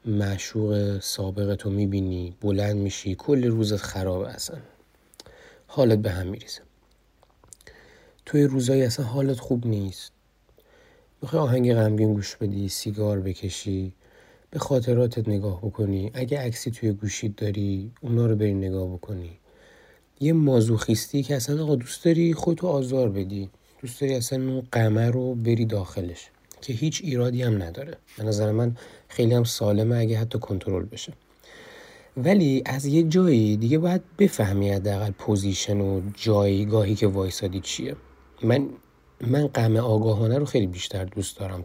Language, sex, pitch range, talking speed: Persian, male, 100-135 Hz, 140 wpm